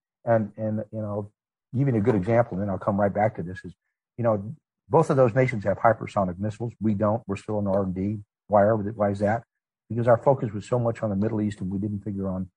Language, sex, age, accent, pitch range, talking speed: English, male, 50-69, American, 105-130 Hz, 250 wpm